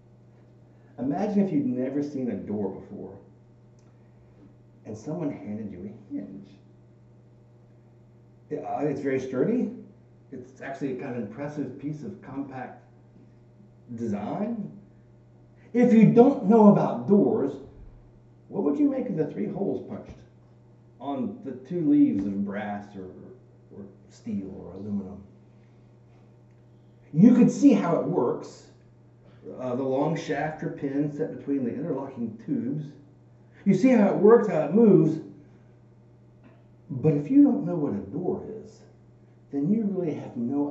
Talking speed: 135 wpm